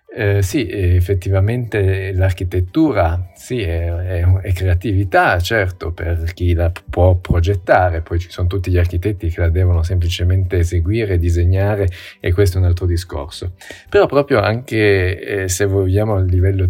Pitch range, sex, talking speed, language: 90-100 Hz, male, 145 wpm, Italian